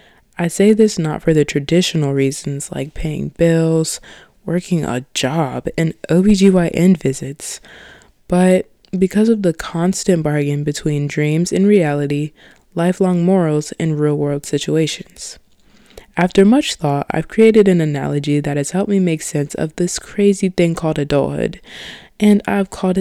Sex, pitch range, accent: female, 150-185 Hz, American